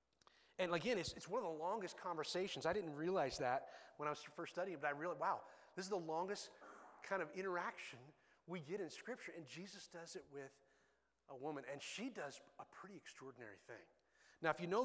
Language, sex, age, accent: English, male, 30-49, American